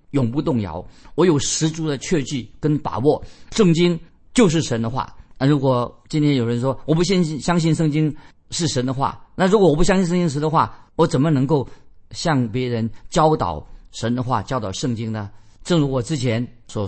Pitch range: 120-165 Hz